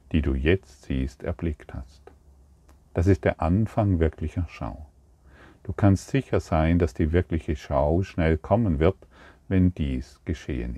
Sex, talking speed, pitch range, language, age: male, 145 wpm, 75-90 Hz, German, 50-69